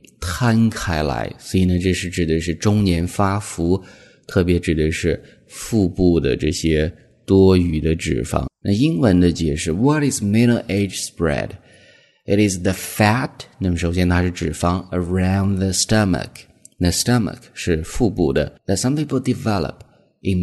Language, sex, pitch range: Chinese, male, 85-110 Hz